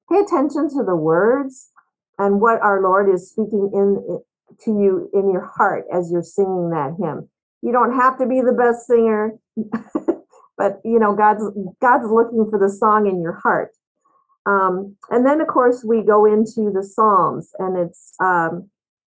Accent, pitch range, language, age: American, 190-230 Hz, English, 50-69